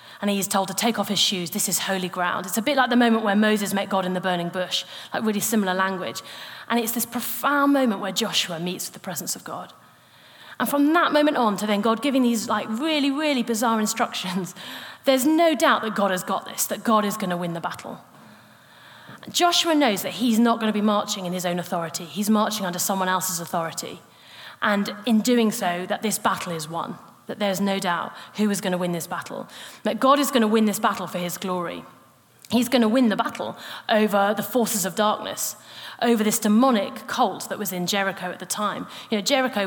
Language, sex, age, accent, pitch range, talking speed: English, female, 30-49, British, 190-230 Hz, 225 wpm